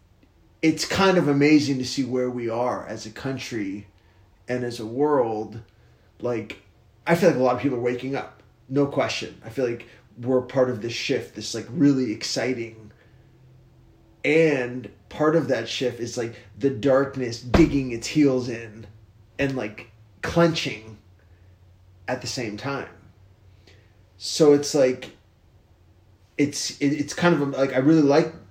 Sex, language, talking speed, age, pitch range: male, English, 150 wpm, 30-49, 100-130 Hz